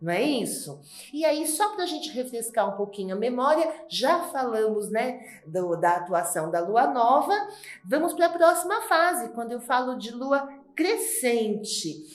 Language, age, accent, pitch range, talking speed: Portuguese, 40-59, Brazilian, 210-300 Hz, 170 wpm